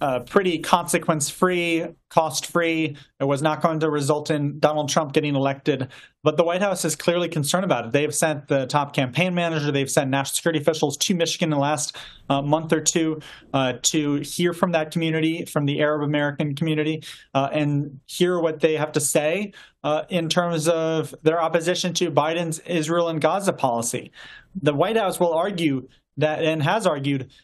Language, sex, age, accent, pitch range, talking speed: English, male, 30-49, American, 145-170 Hz, 185 wpm